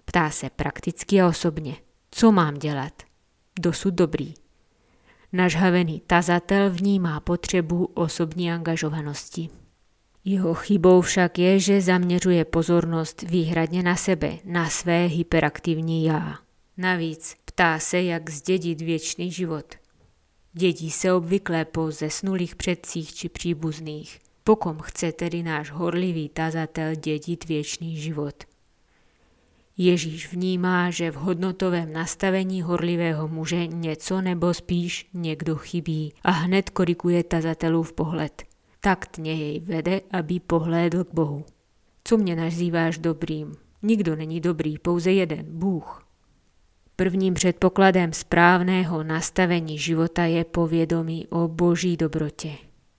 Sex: female